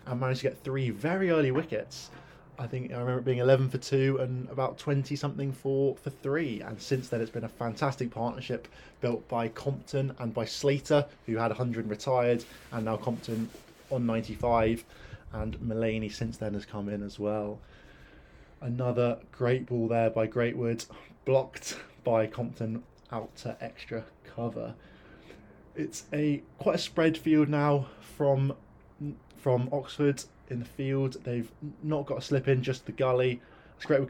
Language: English